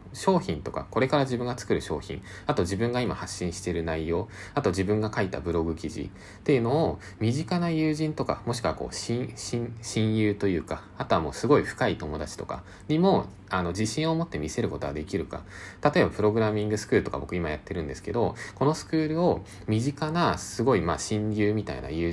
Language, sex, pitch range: Japanese, male, 85-120 Hz